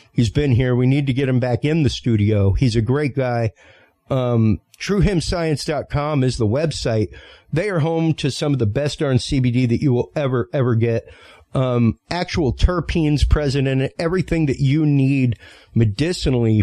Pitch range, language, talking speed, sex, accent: 115-150 Hz, English, 170 wpm, male, American